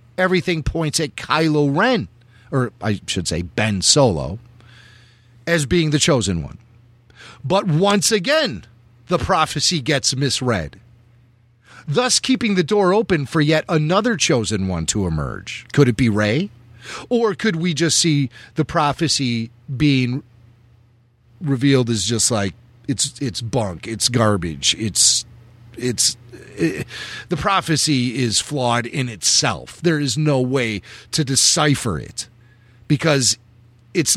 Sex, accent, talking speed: male, American, 130 wpm